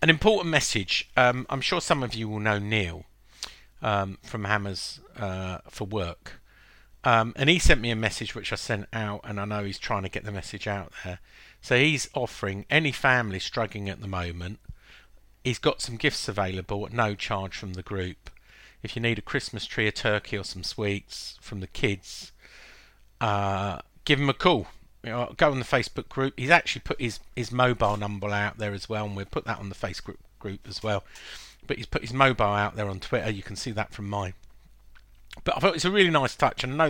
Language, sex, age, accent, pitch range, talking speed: English, male, 50-69, British, 100-130 Hz, 220 wpm